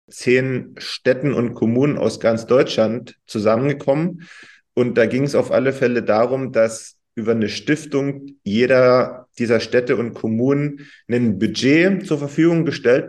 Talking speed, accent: 140 wpm, German